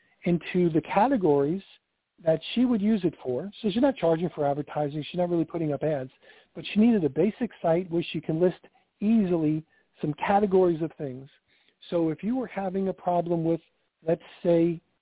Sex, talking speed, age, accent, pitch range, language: male, 185 wpm, 50-69, American, 160-190 Hz, English